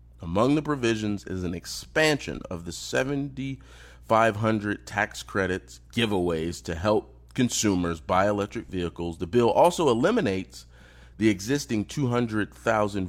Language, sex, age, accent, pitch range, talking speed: English, male, 30-49, American, 80-110 Hz, 115 wpm